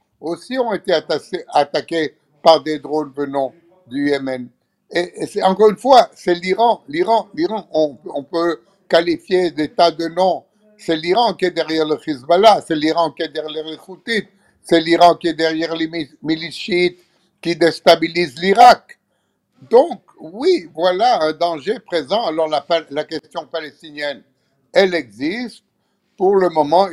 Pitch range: 155-190 Hz